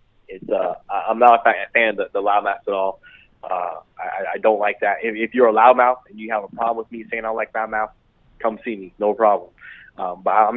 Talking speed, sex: 235 wpm, male